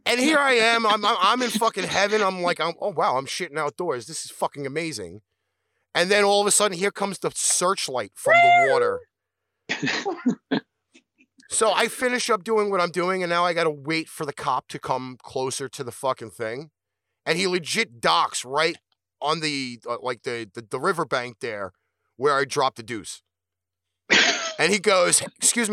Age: 30-49